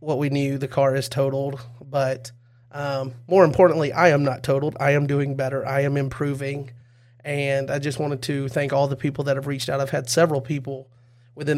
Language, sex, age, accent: English, male, 30-49, American